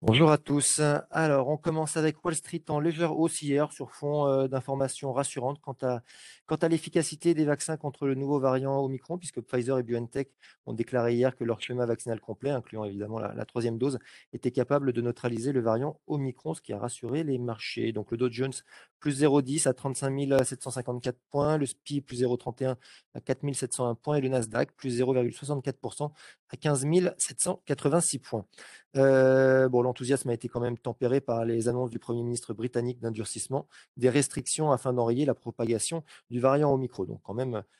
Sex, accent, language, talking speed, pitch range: male, French, French, 185 wpm, 120-145 Hz